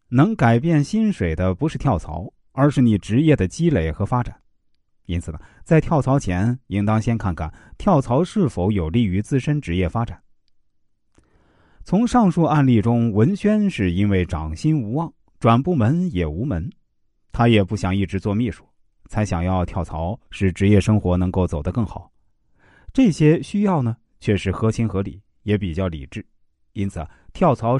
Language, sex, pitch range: Chinese, male, 90-145 Hz